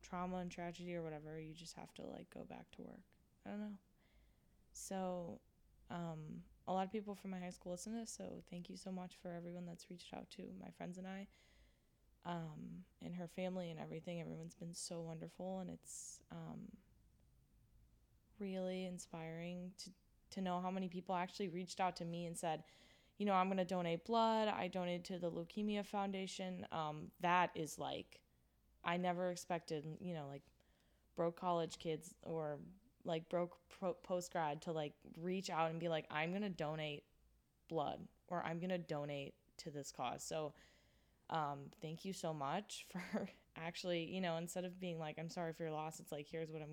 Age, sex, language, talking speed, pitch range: 10-29, female, English, 190 wpm, 160-185 Hz